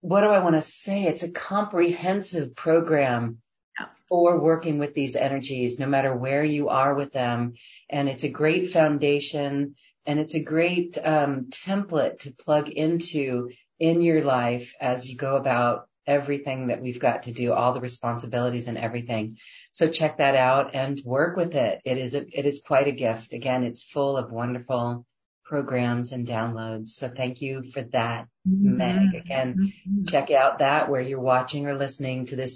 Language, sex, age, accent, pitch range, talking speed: English, female, 40-59, American, 125-155 Hz, 175 wpm